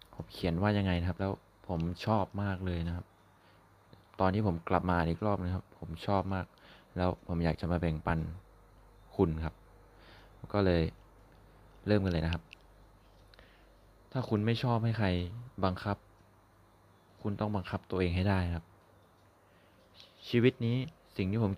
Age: 20-39